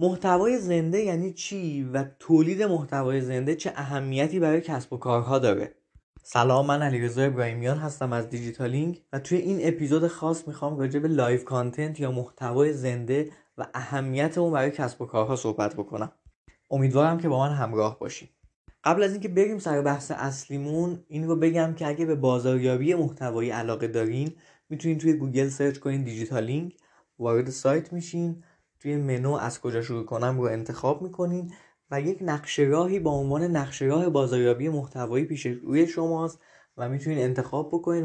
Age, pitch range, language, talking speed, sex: 20-39, 130-165 Hz, Persian, 160 wpm, male